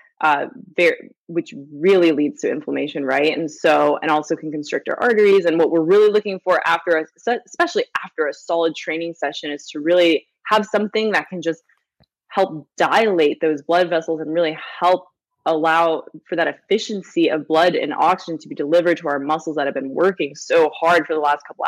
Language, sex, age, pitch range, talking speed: English, female, 20-39, 155-185 Hz, 190 wpm